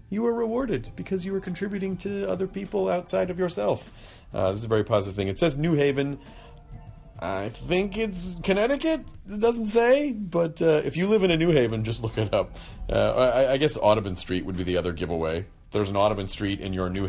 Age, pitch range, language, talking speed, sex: 40-59, 100-165 Hz, English, 220 wpm, male